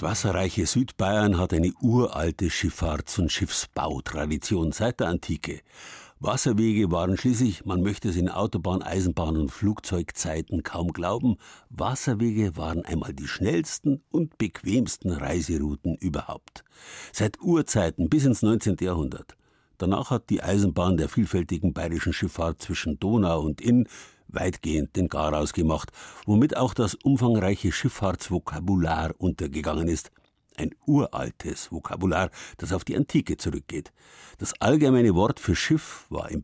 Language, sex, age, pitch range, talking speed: German, male, 60-79, 85-110 Hz, 130 wpm